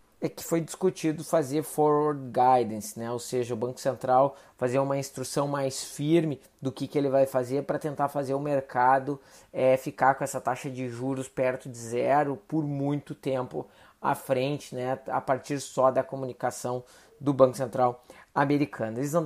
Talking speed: 170 wpm